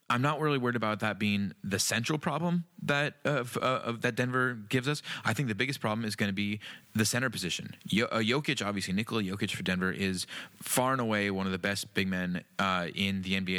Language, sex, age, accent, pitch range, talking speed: English, male, 20-39, American, 100-120 Hz, 235 wpm